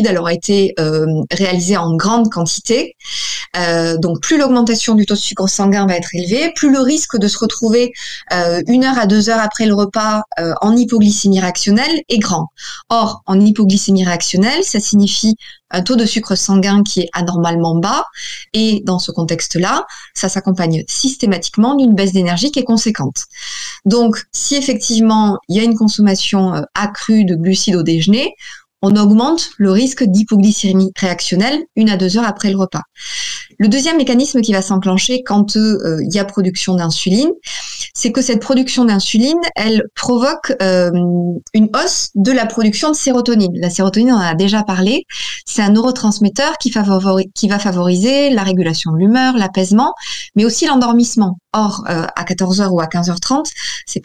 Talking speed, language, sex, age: 170 wpm, French, female, 20-39